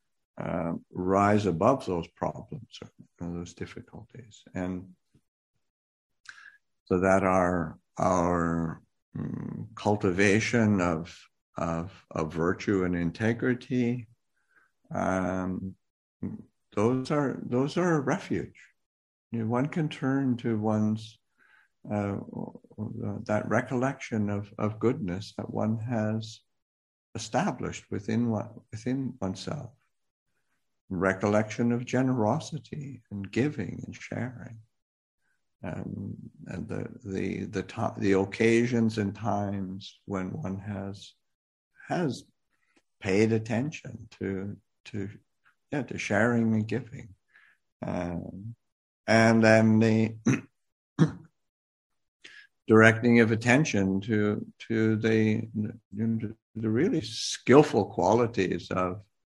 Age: 60-79